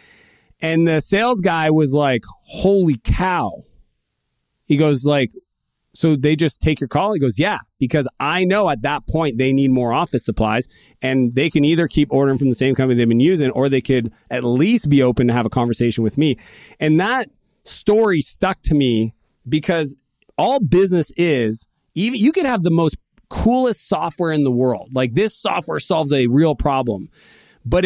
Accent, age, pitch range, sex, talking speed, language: American, 30-49, 135-185 Hz, male, 185 wpm, English